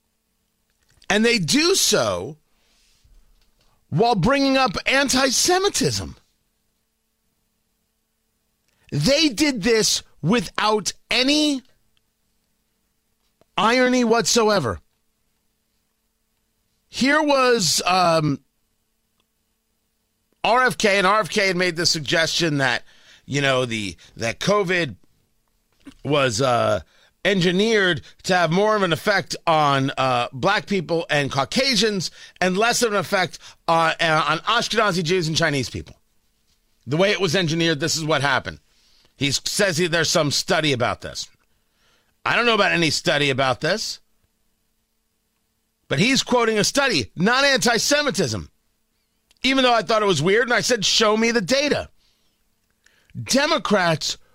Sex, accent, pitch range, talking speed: male, American, 155-240 Hz, 115 wpm